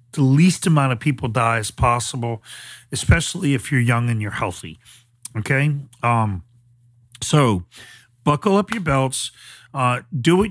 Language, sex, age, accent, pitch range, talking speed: English, male, 40-59, American, 120-165 Hz, 145 wpm